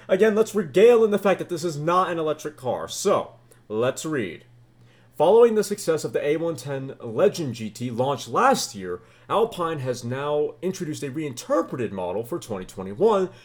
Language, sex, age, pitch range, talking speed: English, male, 30-49, 120-175 Hz, 160 wpm